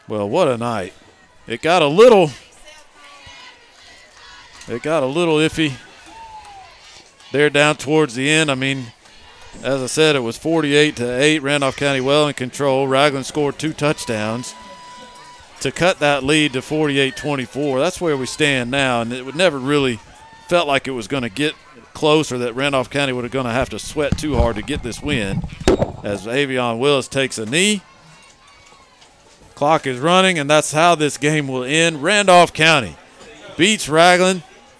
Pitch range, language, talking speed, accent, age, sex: 135-180 Hz, English, 160 wpm, American, 50-69, male